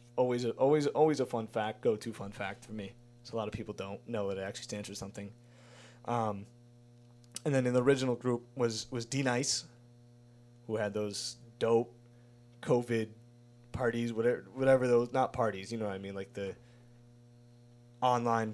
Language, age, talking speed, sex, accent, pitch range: English, 20-39, 180 wpm, male, American, 110-120 Hz